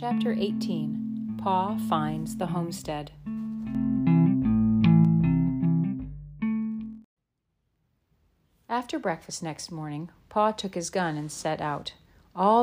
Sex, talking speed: female, 85 wpm